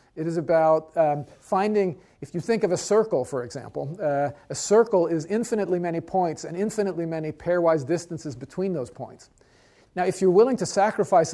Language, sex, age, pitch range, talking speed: English, male, 50-69, 145-185 Hz, 180 wpm